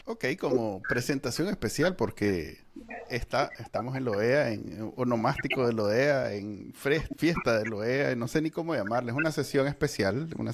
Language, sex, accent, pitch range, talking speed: Spanish, male, Venezuelan, 115-145 Hz, 170 wpm